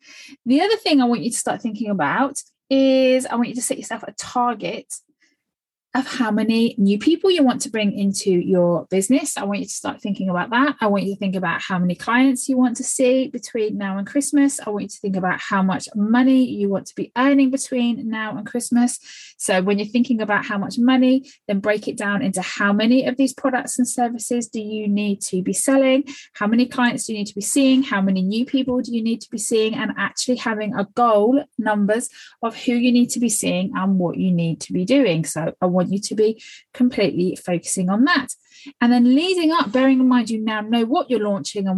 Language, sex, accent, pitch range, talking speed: English, female, British, 200-260 Hz, 235 wpm